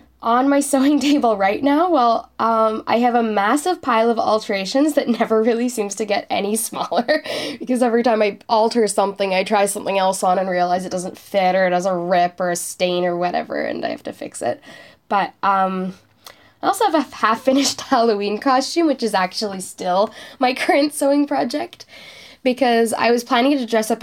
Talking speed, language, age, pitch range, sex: 200 wpm, English, 10-29, 190-245 Hz, female